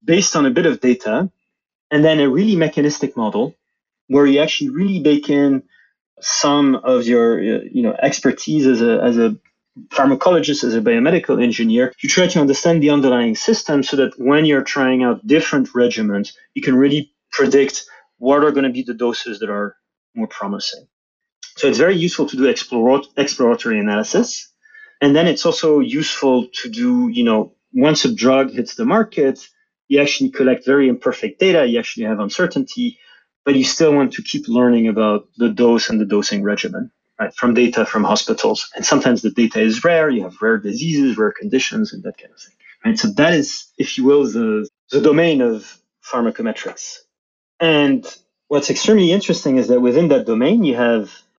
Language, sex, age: English, male, 30-49